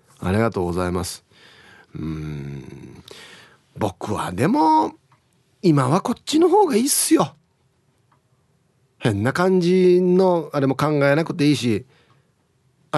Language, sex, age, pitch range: Japanese, male, 40-59, 125-185 Hz